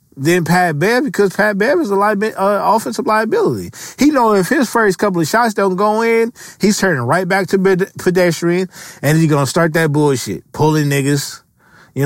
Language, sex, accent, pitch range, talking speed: English, male, American, 150-200 Hz, 195 wpm